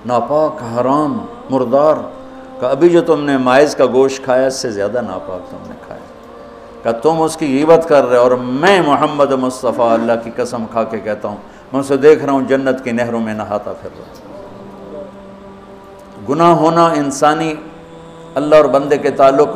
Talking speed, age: 170 wpm, 60-79